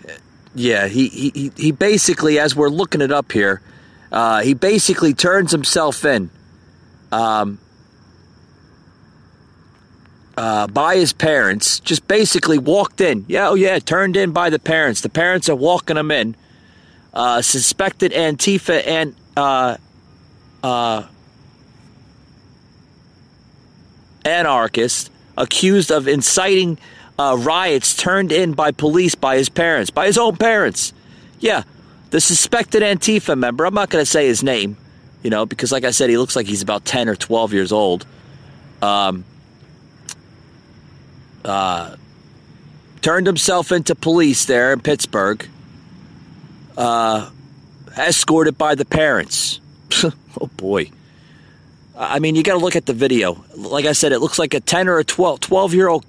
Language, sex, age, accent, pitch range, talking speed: English, male, 30-49, American, 120-175 Hz, 140 wpm